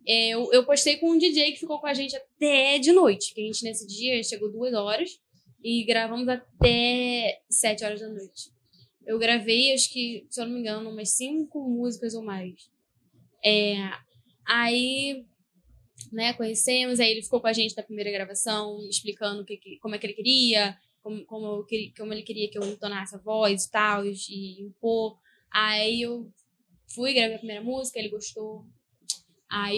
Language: Portuguese